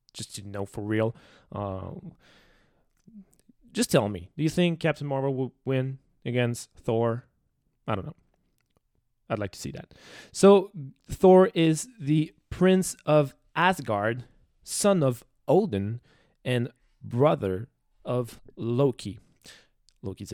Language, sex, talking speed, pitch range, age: English, male, 120 wpm, 120-160 Hz, 20-39